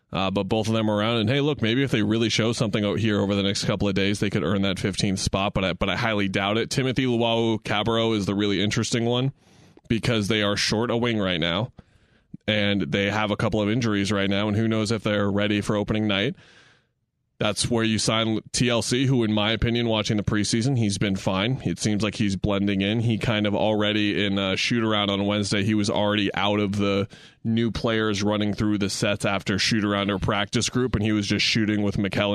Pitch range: 100-115 Hz